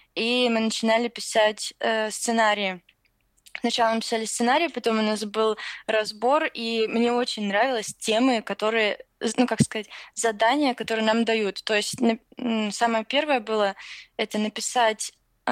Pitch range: 215-240 Hz